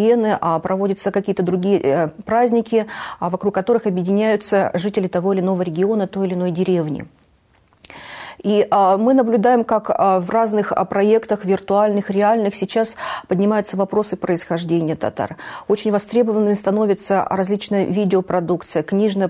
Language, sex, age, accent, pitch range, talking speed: Russian, female, 40-59, native, 180-210 Hz, 125 wpm